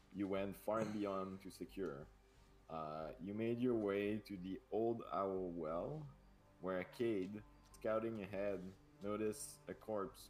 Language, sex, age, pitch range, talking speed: English, male, 20-39, 85-105 Hz, 140 wpm